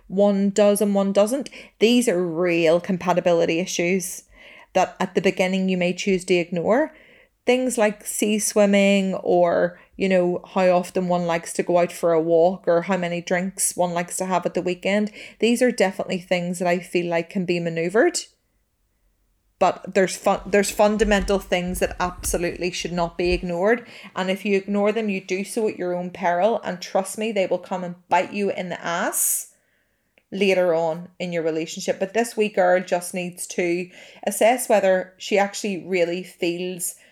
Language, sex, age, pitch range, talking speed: English, female, 30-49, 180-210 Hz, 180 wpm